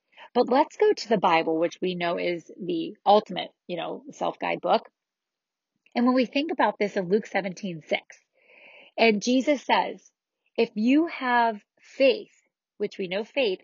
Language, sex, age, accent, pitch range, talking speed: English, female, 30-49, American, 185-230 Hz, 165 wpm